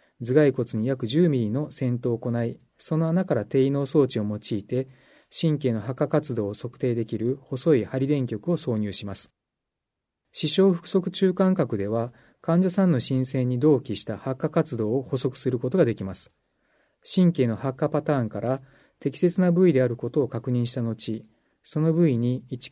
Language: Japanese